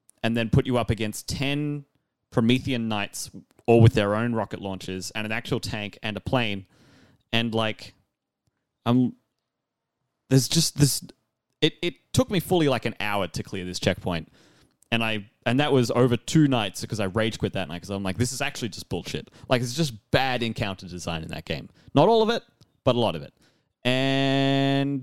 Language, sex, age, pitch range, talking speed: English, male, 20-39, 105-140 Hz, 195 wpm